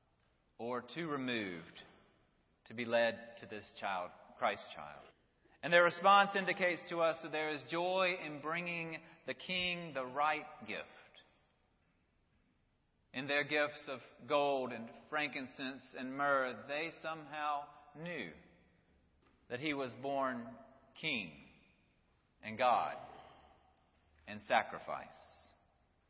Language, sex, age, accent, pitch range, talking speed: English, male, 40-59, American, 130-170 Hz, 115 wpm